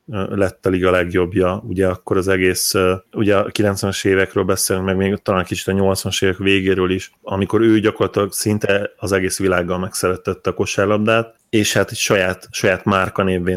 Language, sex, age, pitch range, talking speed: Hungarian, male, 30-49, 90-100 Hz, 170 wpm